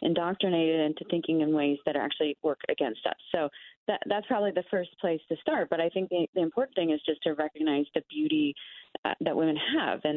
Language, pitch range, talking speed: English, 145-175 Hz, 225 wpm